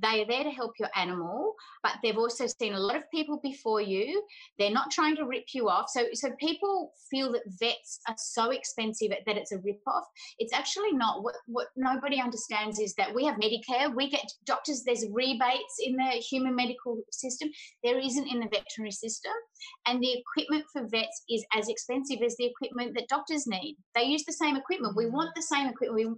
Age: 30-49